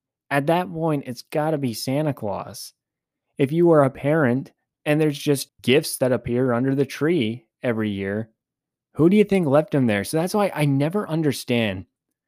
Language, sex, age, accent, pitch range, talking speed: English, male, 20-39, American, 120-155 Hz, 185 wpm